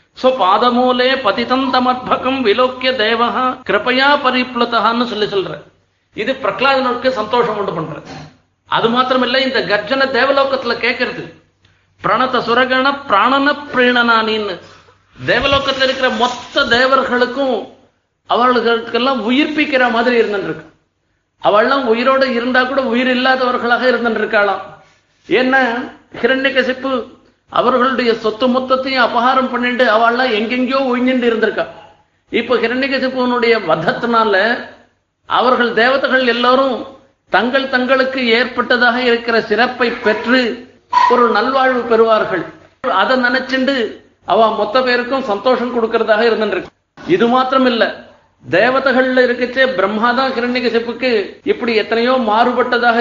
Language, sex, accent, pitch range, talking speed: Tamil, male, native, 230-260 Hz, 75 wpm